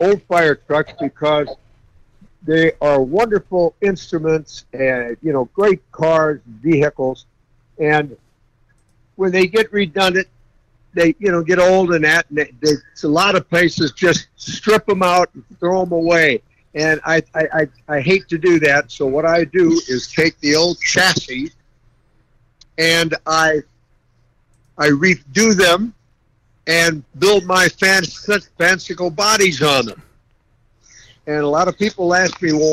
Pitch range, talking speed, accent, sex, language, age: 130-185 Hz, 145 wpm, American, male, English, 60-79